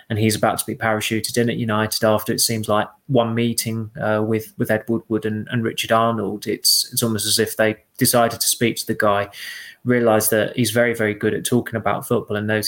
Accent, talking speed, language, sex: British, 225 wpm, English, male